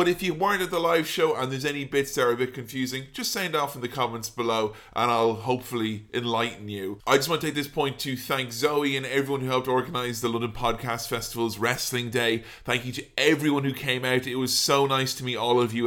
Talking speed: 255 wpm